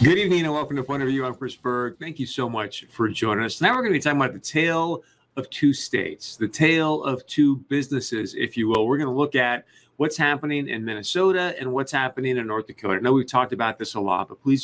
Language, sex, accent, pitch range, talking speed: English, male, American, 115-135 Hz, 260 wpm